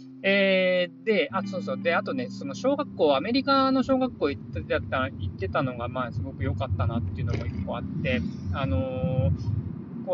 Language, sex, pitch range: Japanese, male, 160-265 Hz